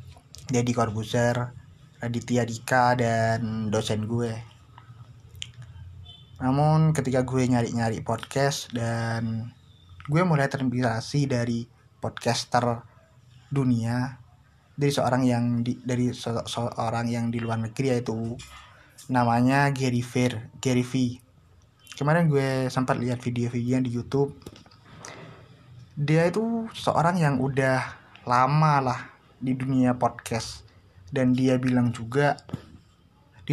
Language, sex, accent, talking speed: Indonesian, male, native, 100 wpm